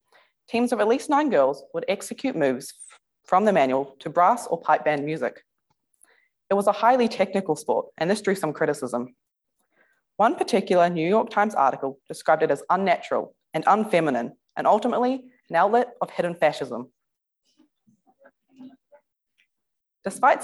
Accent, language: Australian, English